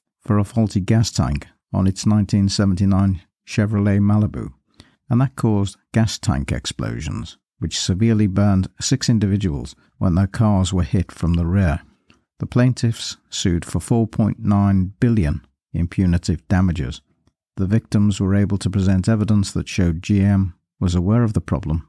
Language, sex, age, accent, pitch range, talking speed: English, male, 60-79, British, 90-110 Hz, 145 wpm